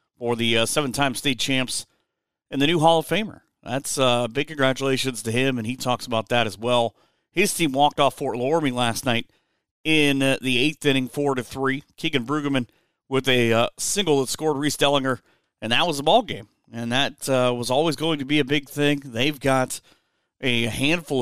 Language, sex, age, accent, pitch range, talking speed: English, male, 40-59, American, 120-145 Hz, 205 wpm